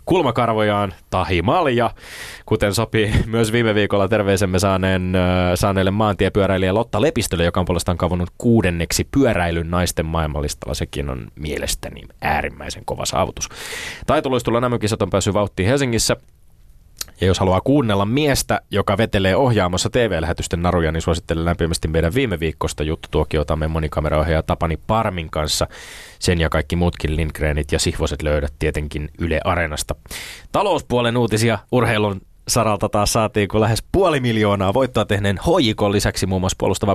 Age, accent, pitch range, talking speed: 20-39, native, 85-110 Hz, 135 wpm